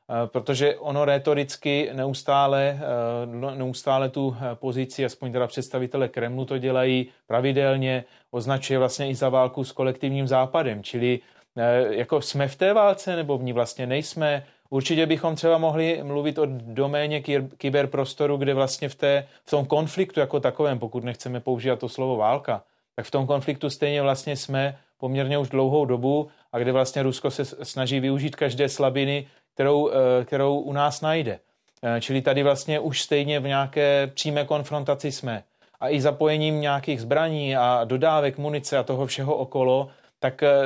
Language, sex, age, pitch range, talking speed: Czech, male, 30-49, 130-150 Hz, 150 wpm